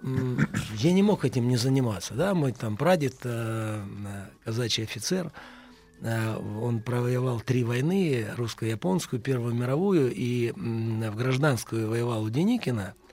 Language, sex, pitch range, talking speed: Russian, male, 115-155 Hz, 130 wpm